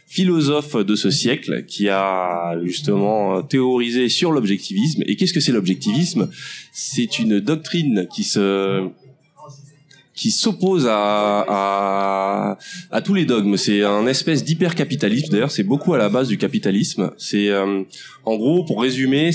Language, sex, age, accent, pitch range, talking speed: French, male, 20-39, French, 100-135 Hz, 145 wpm